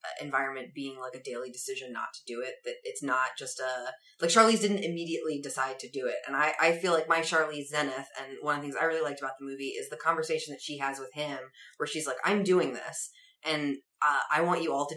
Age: 20-39